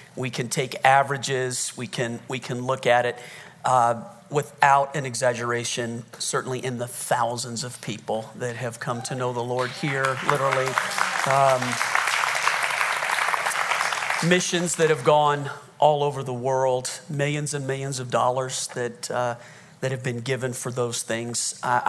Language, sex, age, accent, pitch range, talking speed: English, male, 40-59, American, 125-150 Hz, 150 wpm